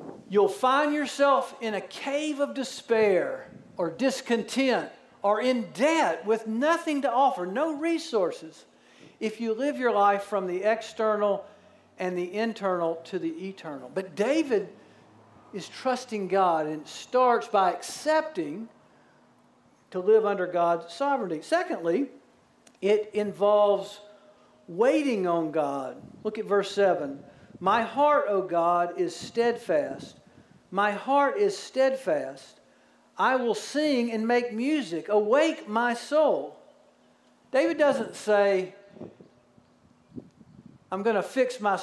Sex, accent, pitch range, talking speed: male, American, 200-270 Hz, 120 wpm